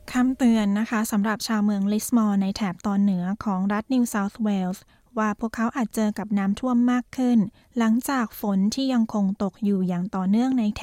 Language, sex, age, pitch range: Thai, female, 20-39, 200-230 Hz